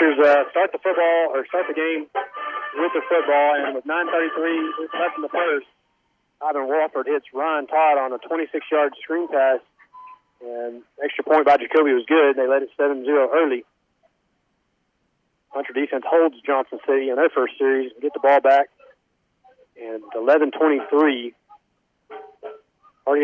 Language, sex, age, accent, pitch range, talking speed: English, male, 40-59, American, 140-210 Hz, 145 wpm